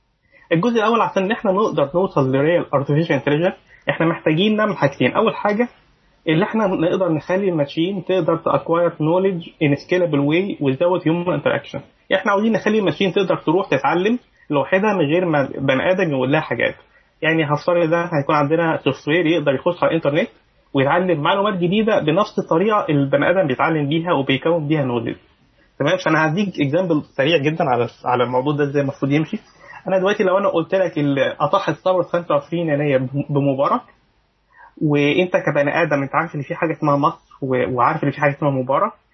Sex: male